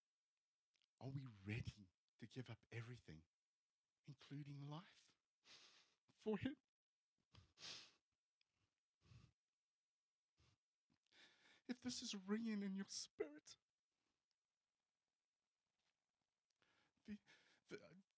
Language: English